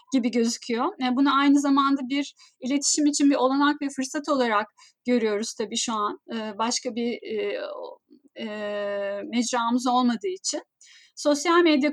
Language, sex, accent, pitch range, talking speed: Turkish, female, native, 240-320 Hz, 140 wpm